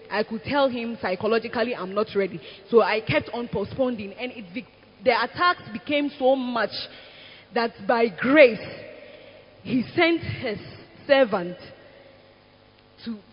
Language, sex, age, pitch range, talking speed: English, female, 20-39, 195-265 Hz, 130 wpm